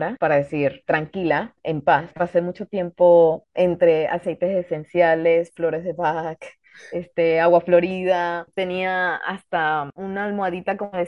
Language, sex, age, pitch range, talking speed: Spanish, female, 20-39, 170-215 Hz, 125 wpm